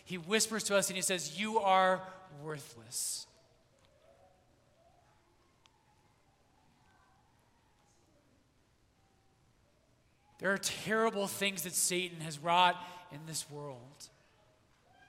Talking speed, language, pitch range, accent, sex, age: 85 wpm, English, 165-210 Hz, American, male, 30-49